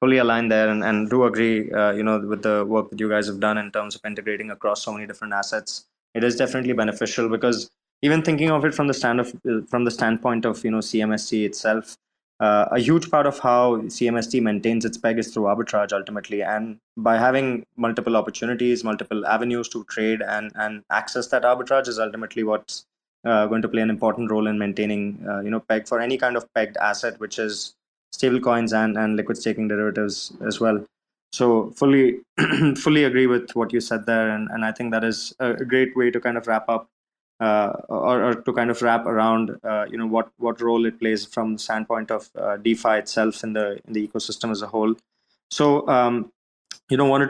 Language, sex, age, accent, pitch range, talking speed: English, male, 20-39, Indian, 110-120 Hz, 215 wpm